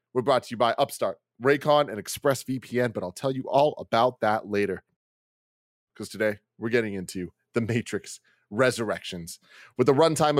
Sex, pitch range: male, 100-130 Hz